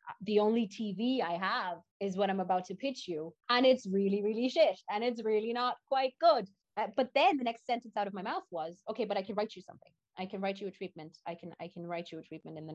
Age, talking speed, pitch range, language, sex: 30-49, 270 wpm, 160-215 Hz, English, female